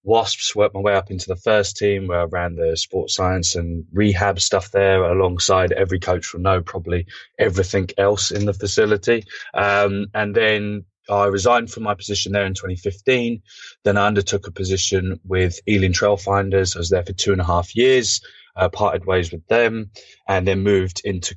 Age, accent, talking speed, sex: 20-39, British, 190 wpm, male